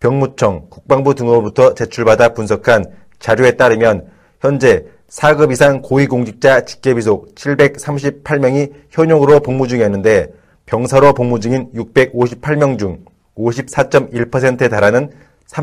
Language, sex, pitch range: Korean, male, 120-145 Hz